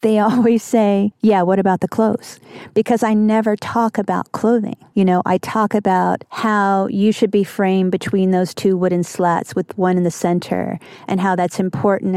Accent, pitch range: American, 185-215 Hz